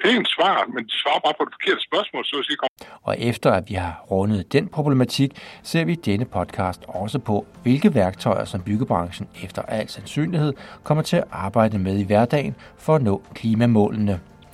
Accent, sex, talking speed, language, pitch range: native, male, 180 wpm, Danish, 100-140 Hz